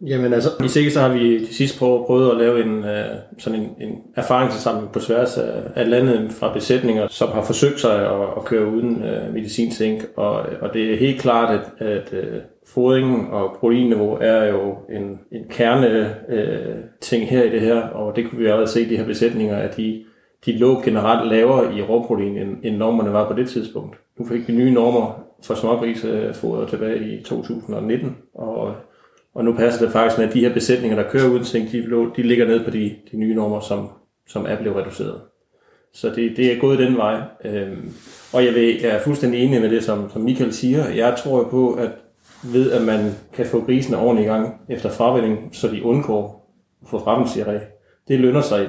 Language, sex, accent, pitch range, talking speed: Danish, male, native, 110-125 Hz, 205 wpm